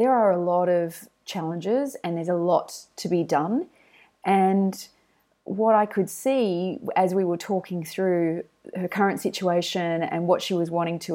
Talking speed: 170 wpm